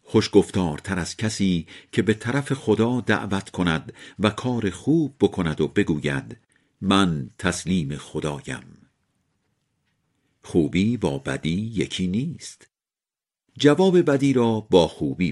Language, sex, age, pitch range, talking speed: Persian, male, 50-69, 85-130 Hz, 115 wpm